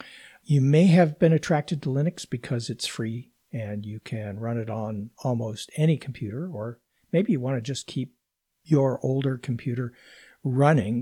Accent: American